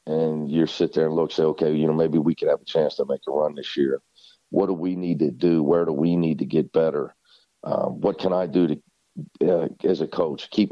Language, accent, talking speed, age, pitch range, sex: English, American, 260 wpm, 50-69, 85-105 Hz, male